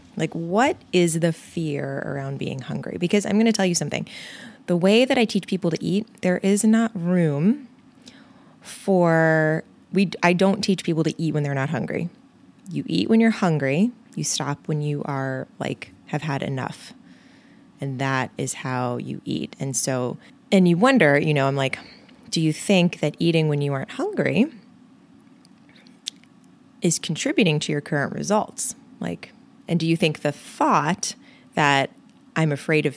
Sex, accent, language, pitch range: female, American, English, 145-230 Hz